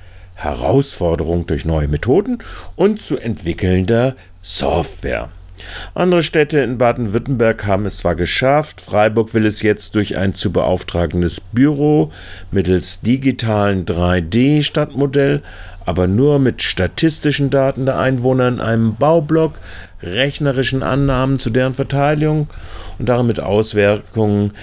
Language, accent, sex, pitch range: German, German, male, 90-130 Hz